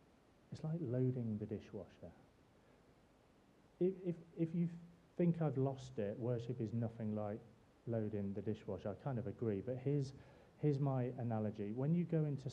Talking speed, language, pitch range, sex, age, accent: 160 wpm, English, 110-140 Hz, male, 30-49, British